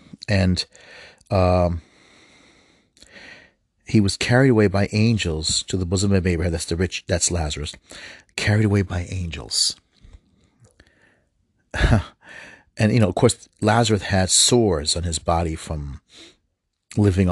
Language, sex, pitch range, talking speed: English, male, 85-100 Hz, 120 wpm